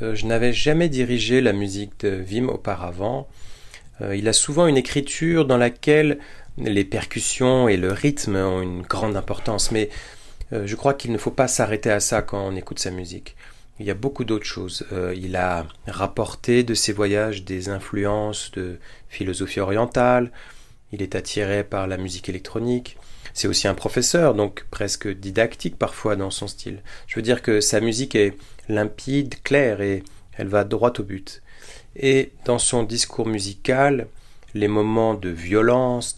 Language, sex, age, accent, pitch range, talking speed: English, male, 30-49, French, 100-120 Hz, 165 wpm